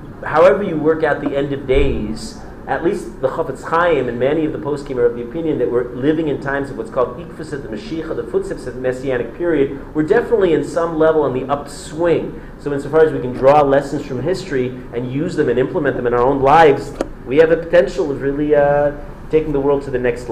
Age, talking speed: 40-59, 240 wpm